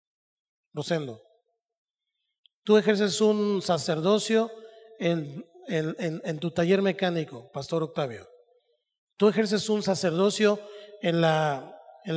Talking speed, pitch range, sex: 105 wpm, 165-205 Hz, male